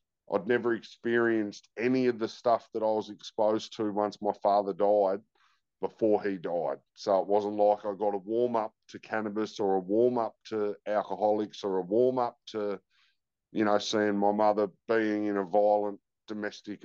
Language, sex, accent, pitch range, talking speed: English, male, Australian, 100-110 Hz, 170 wpm